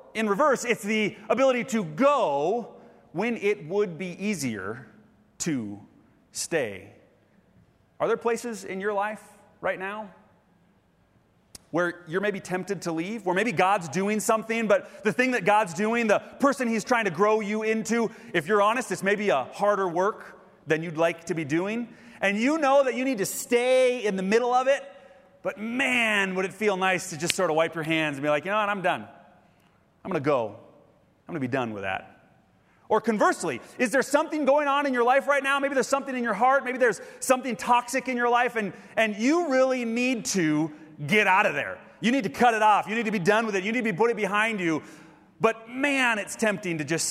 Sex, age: male, 30-49